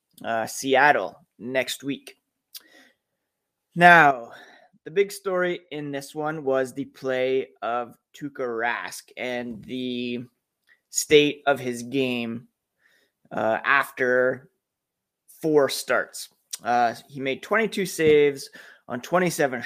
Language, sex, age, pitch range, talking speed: English, male, 20-39, 125-155 Hz, 105 wpm